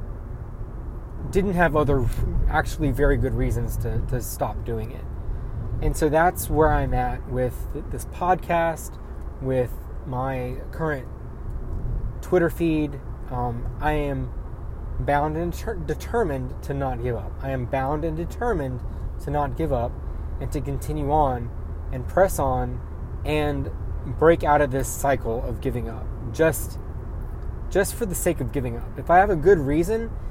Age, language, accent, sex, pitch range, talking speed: 20-39, English, American, male, 105-150 Hz, 150 wpm